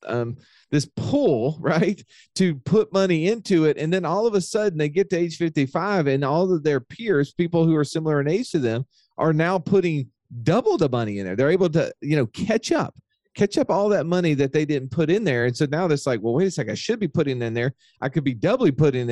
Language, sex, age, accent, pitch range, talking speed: English, male, 40-59, American, 120-160 Hz, 245 wpm